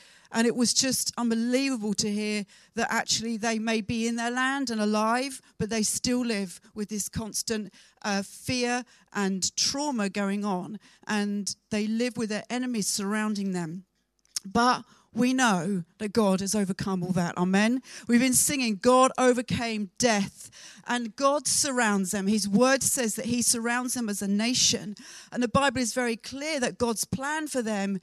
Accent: British